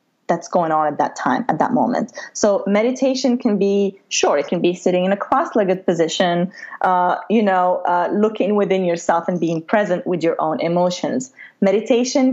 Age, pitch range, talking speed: 20-39, 180-235 Hz, 180 wpm